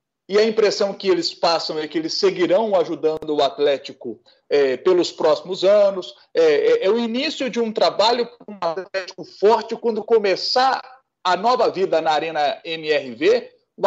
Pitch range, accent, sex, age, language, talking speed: 175-255 Hz, Brazilian, male, 40-59, Portuguese, 160 wpm